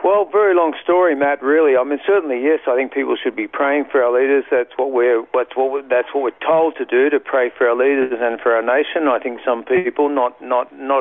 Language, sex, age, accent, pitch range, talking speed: English, male, 50-69, Australian, 125-155 Hz, 235 wpm